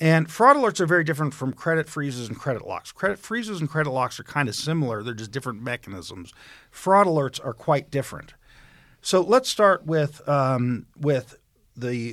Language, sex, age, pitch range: English, male, 50-69, 130-175 Hz